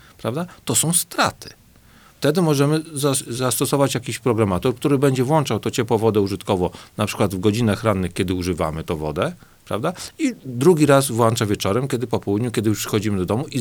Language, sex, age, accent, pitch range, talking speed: Polish, male, 50-69, native, 100-130 Hz, 175 wpm